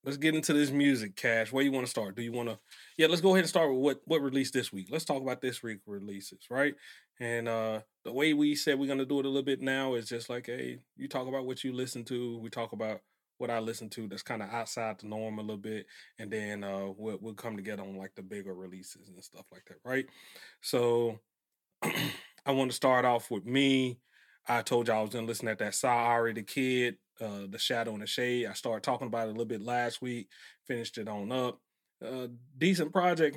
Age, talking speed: 30-49, 245 wpm